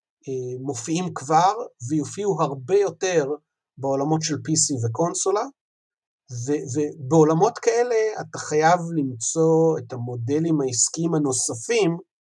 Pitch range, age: 130-160 Hz, 50-69